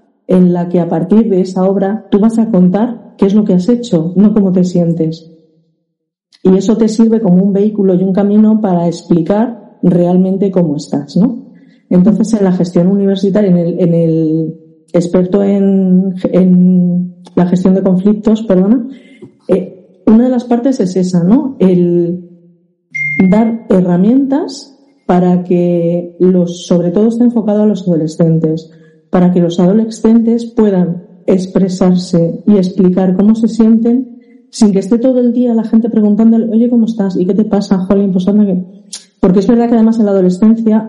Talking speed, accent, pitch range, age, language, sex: 170 wpm, Spanish, 180-220 Hz, 40-59, Spanish, female